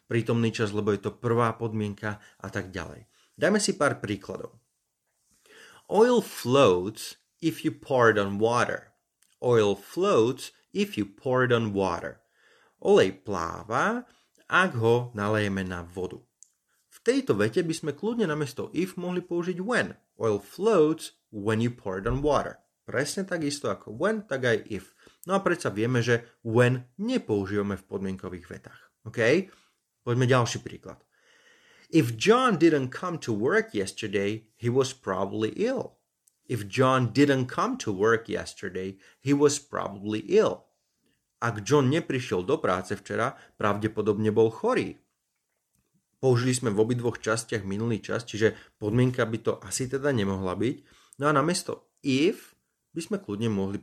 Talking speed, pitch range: 145 wpm, 105-140 Hz